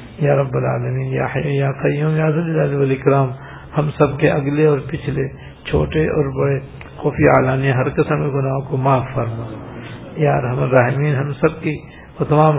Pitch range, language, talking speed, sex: 130-155 Hz, Urdu, 155 wpm, male